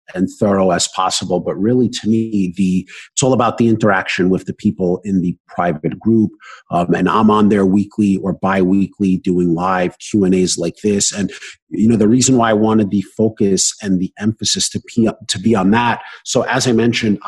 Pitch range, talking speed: 100-120 Hz, 200 wpm